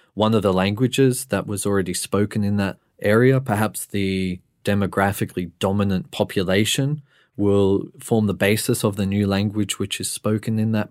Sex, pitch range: male, 95-115 Hz